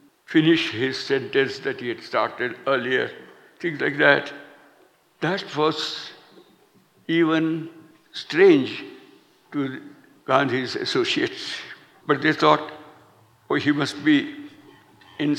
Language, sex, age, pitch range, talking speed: Spanish, male, 60-79, 140-220 Hz, 100 wpm